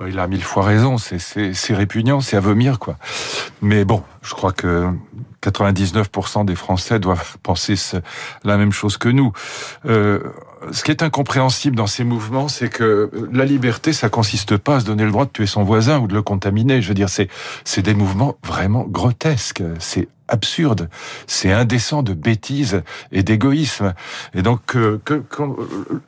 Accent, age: French, 50-69